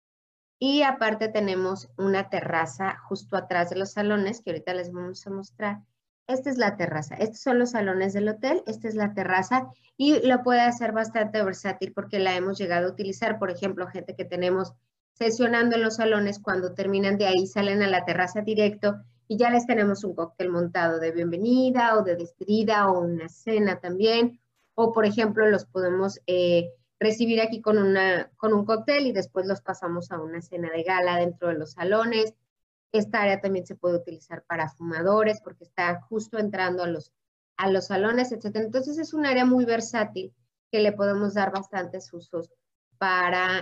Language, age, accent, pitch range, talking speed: Spanish, 30-49, Mexican, 180-220 Hz, 185 wpm